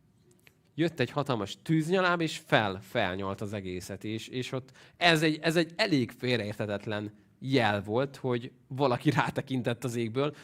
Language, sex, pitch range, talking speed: Hungarian, male, 105-140 Hz, 150 wpm